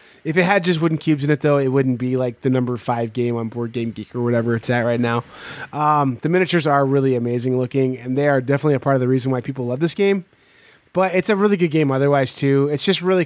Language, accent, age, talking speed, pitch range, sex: English, American, 20-39, 265 wpm, 135-170 Hz, male